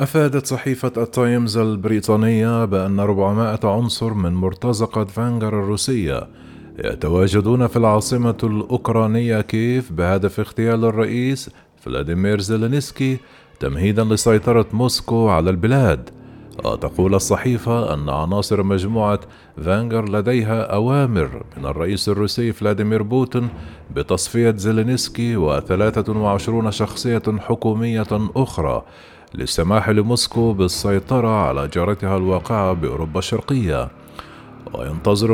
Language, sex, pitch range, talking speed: Arabic, male, 95-115 Hz, 95 wpm